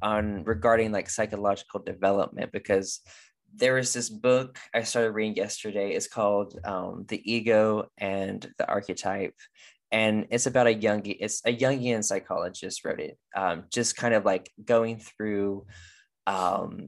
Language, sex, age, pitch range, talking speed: English, male, 20-39, 100-110 Hz, 145 wpm